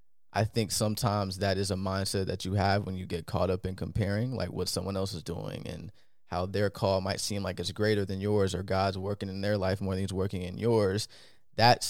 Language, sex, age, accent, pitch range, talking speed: English, male, 20-39, American, 95-115 Hz, 235 wpm